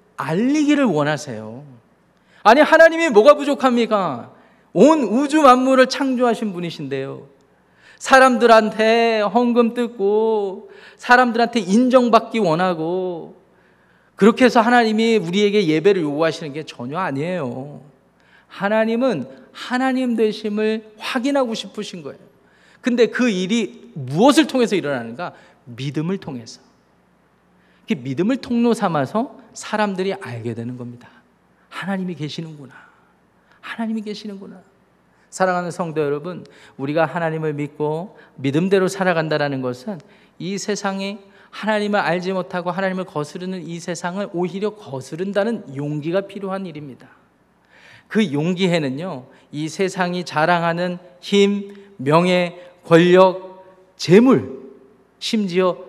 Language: Korean